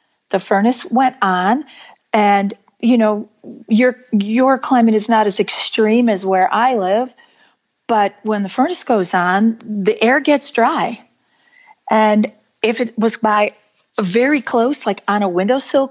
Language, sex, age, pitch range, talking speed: English, female, 40-59, 200-250 Hz, 145 wpm